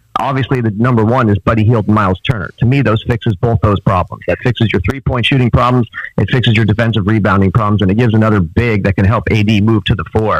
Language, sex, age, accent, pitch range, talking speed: English, male, 30-49, American, 105-130 Hz, 235 wpm